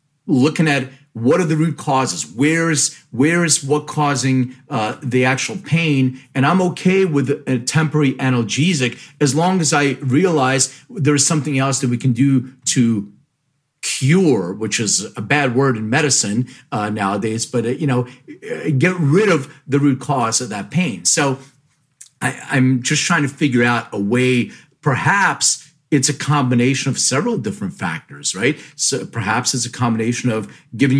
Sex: male